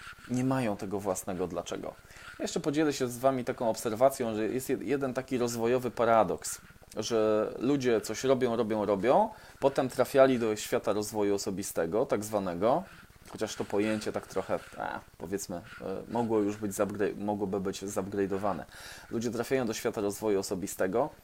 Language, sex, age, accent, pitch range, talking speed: Polish, male, 20-39, native, 100-125 Hz, 145 wpm